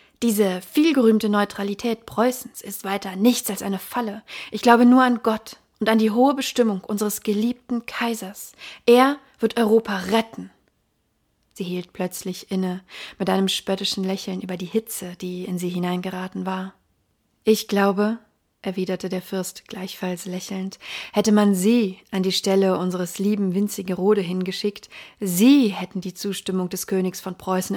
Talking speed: 150 wpm